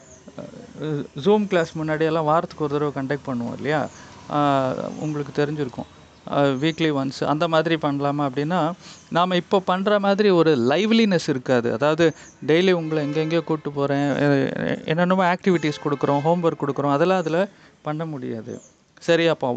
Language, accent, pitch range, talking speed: Tamil, native, 140-175 Hz, 125 wpm